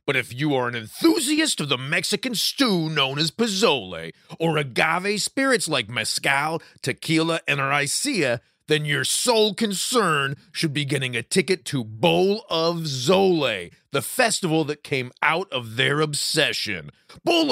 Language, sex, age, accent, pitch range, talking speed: English, male, 30-49, American, 135-190 Hz, 145 wpm